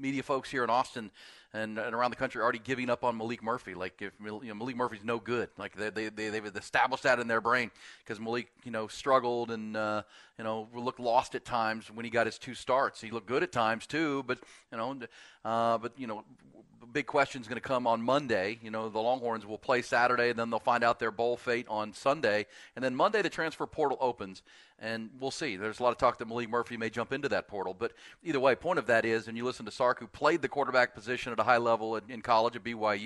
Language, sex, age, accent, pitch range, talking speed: English, male, 40-59, American, 110-135 Hz, 245 wpm